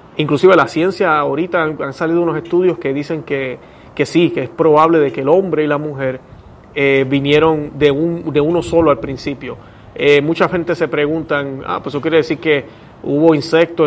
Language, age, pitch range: Spanish, 30-49, 140-165 Hz